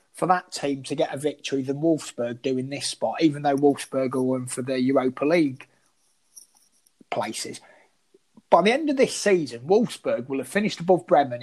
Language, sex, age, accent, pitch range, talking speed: English, male, 30-49, British, 135-180 Hz, 180 wpm